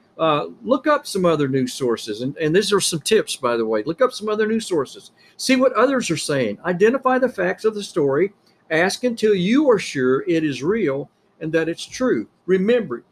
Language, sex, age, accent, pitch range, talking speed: English, male, 50-69, American, 145-210 Hz, 210 wpm